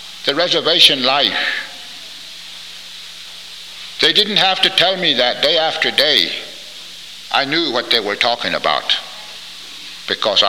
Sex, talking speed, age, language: male, 120 wpm, 60-79, English